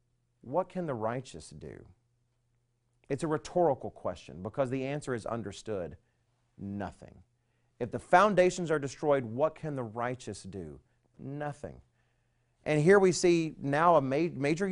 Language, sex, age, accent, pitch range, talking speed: English, male, 40-59, American, 120-165 Hz, 130 wpm